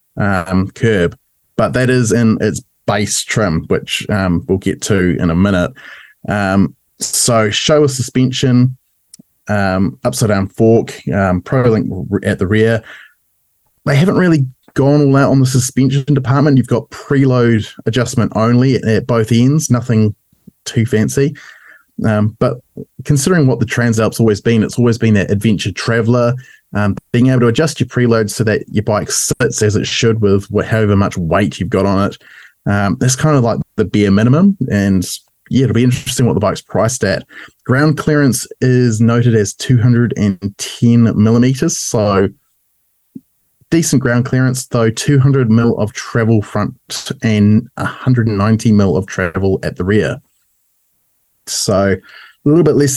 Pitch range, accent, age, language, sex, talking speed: 105-130 Hz, Australian, 20-39, English, male, 155 wpm